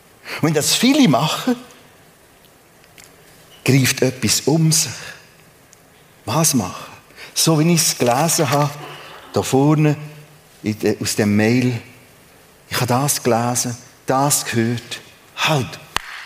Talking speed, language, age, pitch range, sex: 110 wpm, German, 50-69, 120-180 Hz, male